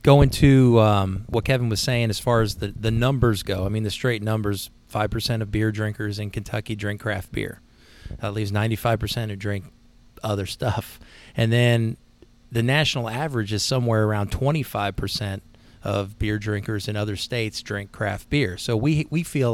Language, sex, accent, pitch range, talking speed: English, male, American, 105-125 Hz, 175 wpm